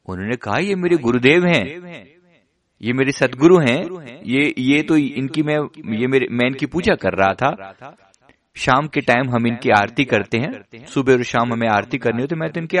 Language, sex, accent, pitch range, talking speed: Hindi, male, native, 115-160 Hz, 195 wpm